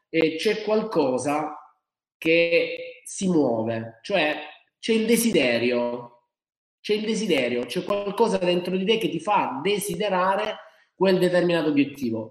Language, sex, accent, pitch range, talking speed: Italian, male, native, 140-210 Hz, 120 wpm